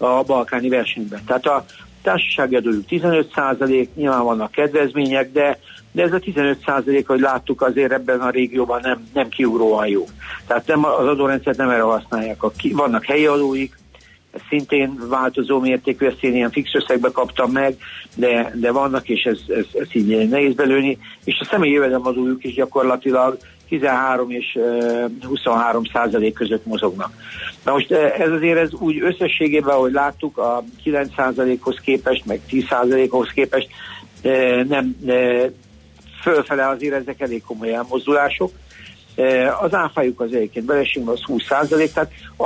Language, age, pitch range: Hungarian, 60-79, 120-140 Hz